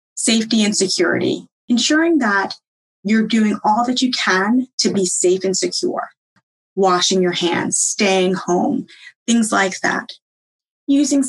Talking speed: 135 wpm